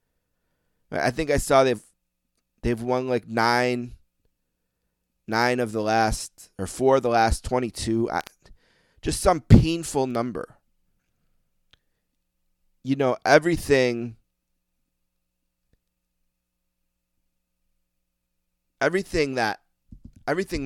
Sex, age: male, 30-49